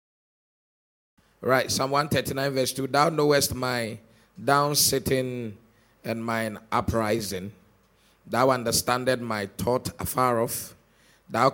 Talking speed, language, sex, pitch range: 100 wpm, English, male, 110-135 Hz